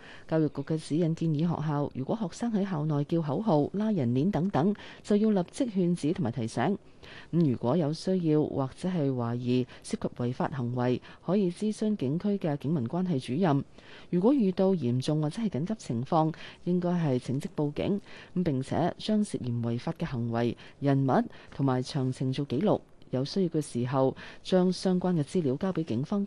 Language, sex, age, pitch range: Chinese, female, 30-49, 130-180 Hz